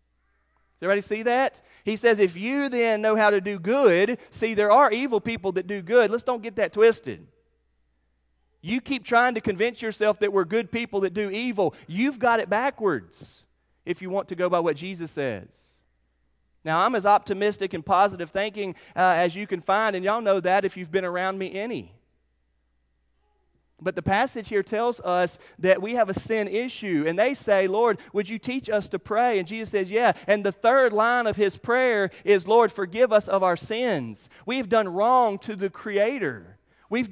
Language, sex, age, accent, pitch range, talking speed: English, male, 30-49, American, 190-230 Hz, 195 wpm